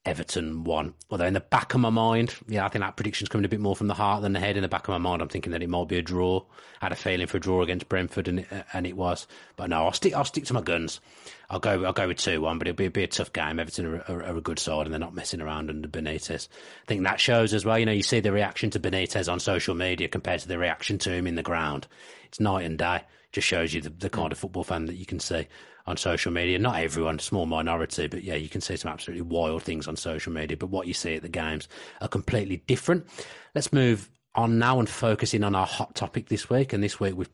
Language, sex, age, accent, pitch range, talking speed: English, male, 30-49, British, 85-105 Hz, 285 wpm